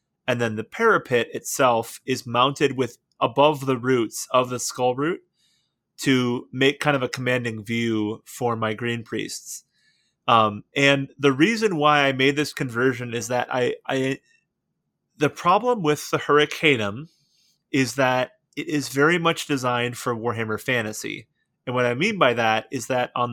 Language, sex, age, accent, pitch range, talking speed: English, male, 30-49, American, 120-145 Hz, 160 wpm